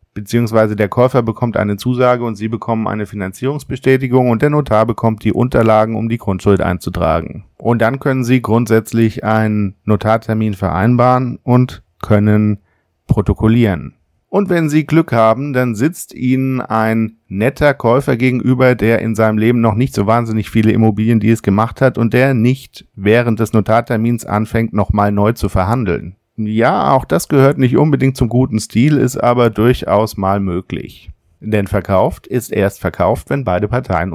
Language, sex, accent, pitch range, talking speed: German, male, German, 100-120 Hz, 160 wpm